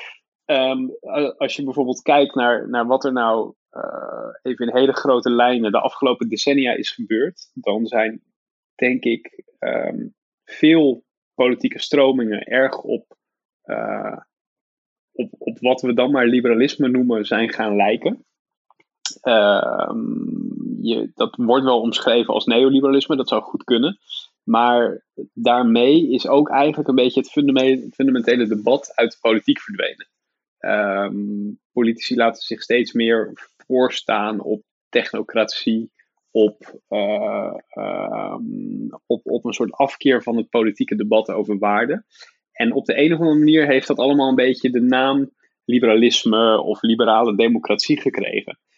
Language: Dutch